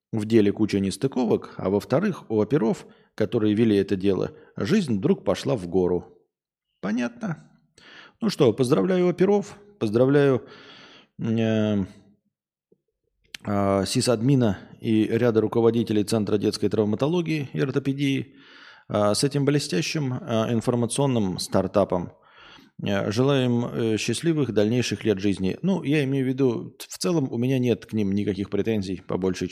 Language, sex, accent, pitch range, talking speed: Russian, male, native, 100-130 Hz, 130 wpm